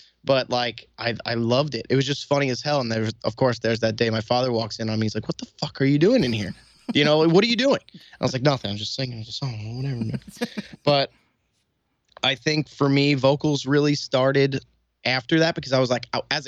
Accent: American